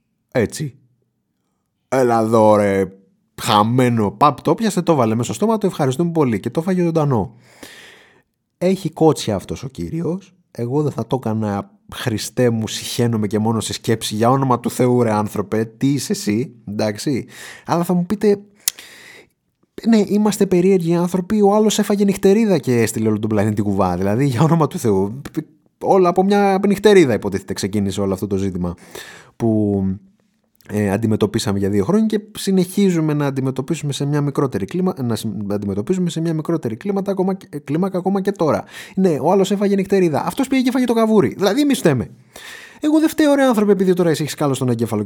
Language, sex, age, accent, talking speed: Greek, male, 30-49, native, 160 wpm